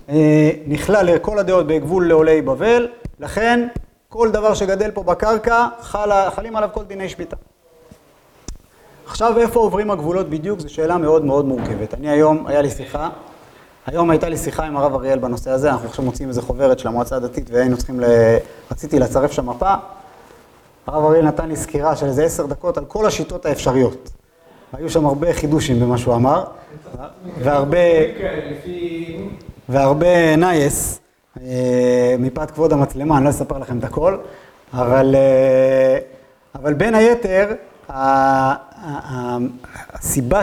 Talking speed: 135 wpm